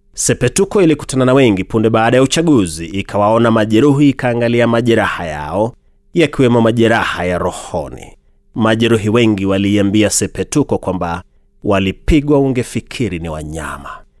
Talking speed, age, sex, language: 115 wpm, 30-49, male, Swahili